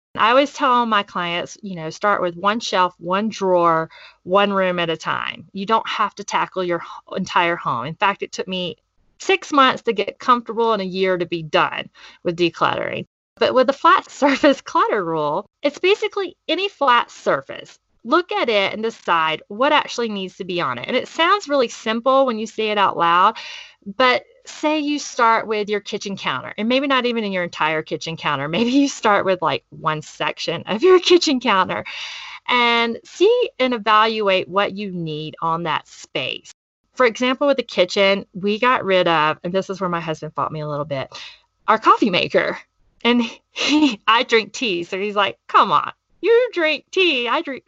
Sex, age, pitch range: female, 30-49, 180-260 Hz